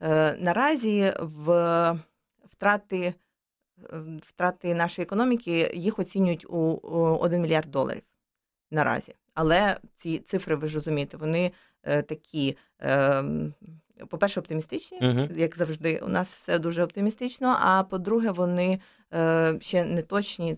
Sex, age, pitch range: female, 30-49, 160-195 Hz